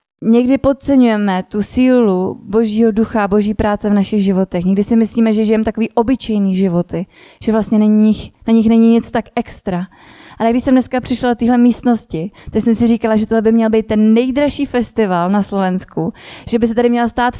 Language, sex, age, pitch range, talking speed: Slovak, female, 20-39, 195-235 Hz, 195 wpm